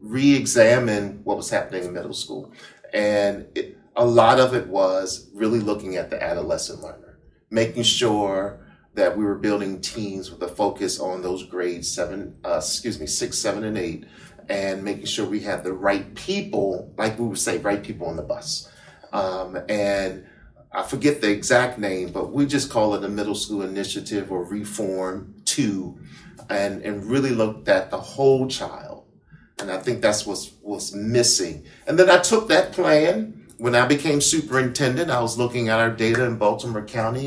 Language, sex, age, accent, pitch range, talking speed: English, male, 40-59, American, 100-120 Hz, 175 wpm